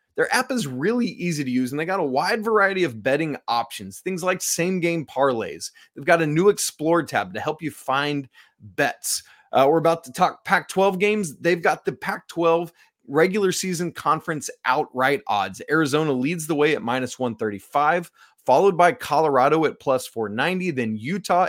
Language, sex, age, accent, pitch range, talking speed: English, male, 20-39, American, 135-200 Hz, 180 wpm